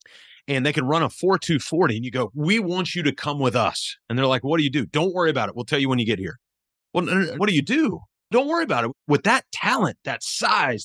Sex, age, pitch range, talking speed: male, 30-49, 120-170 Hz, 265 wpm